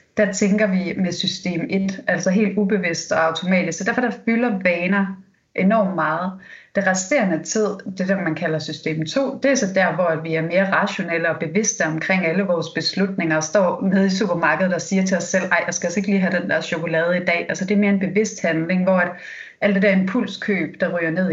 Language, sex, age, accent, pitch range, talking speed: Danish, female, 30-49, native, 175-205 Hz, 225 wpm